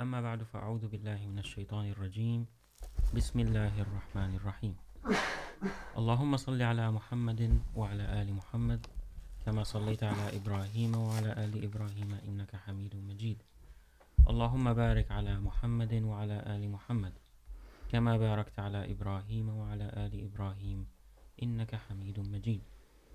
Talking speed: 105 wpm